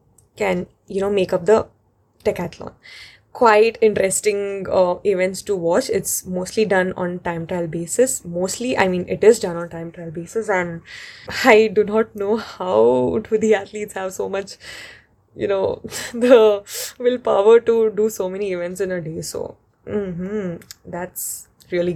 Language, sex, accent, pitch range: English, female, Indian, 185-225 Hz